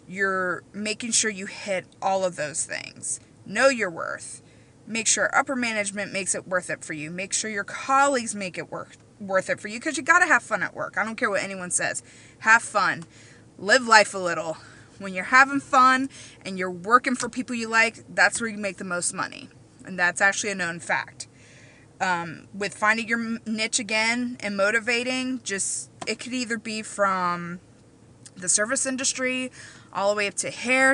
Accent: American